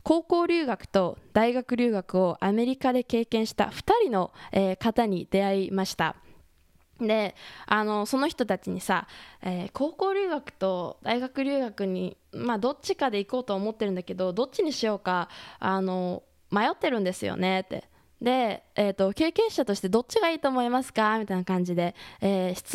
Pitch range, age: 190-260 Hz, 20-39